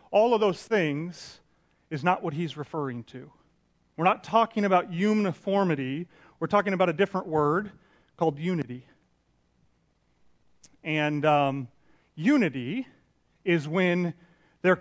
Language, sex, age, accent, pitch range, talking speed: English, male, 30-49, American, 140-180 Hz, 120 wpm